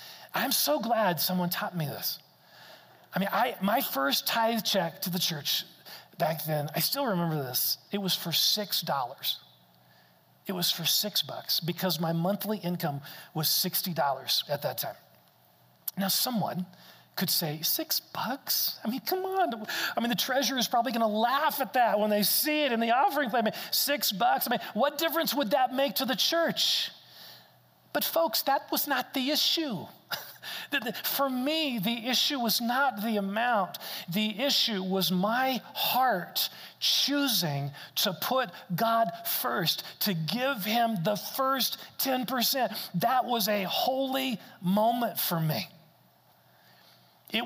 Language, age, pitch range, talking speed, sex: English, 40-59, 180-260 Hz, 160 wpm, male